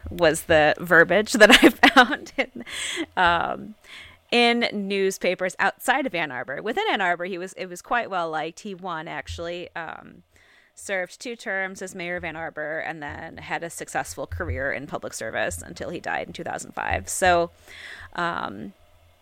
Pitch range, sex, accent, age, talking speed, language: 160-220 Hz, female, American, 20-39, 170 wpm, English